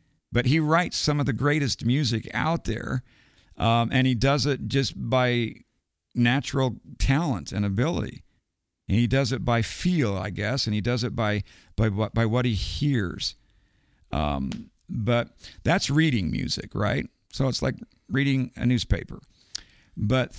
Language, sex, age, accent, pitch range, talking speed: English, male, 50-69, American, 100-125 Hz, 150 wpm